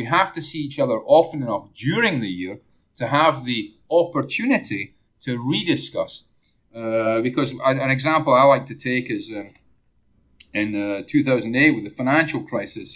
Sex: male